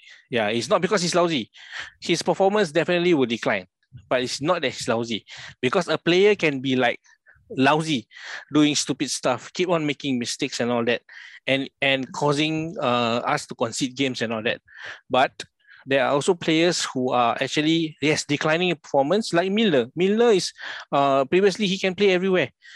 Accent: Malaysian